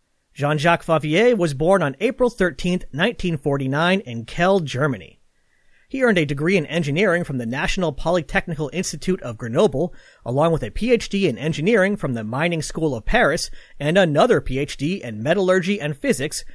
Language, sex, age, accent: English, male, 40-59, American